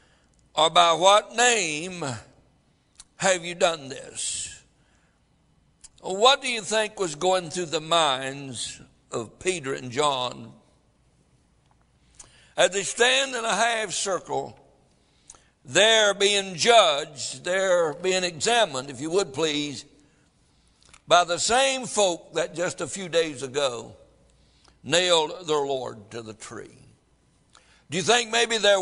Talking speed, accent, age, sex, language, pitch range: 125 wpm, American, 60-79, male, English, 155-215 Hz